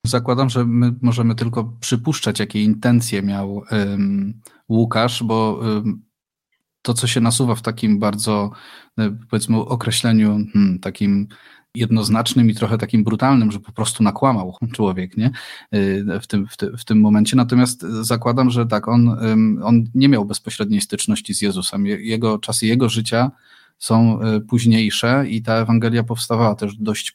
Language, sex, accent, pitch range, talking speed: Polish, male, native, 110-120 Hz, 150 wpm